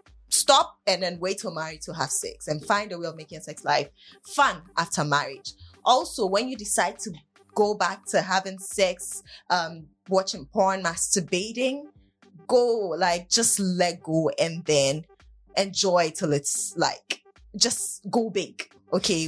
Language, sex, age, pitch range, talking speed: English, female, 10-29, 165-200 Hz, 155 wpm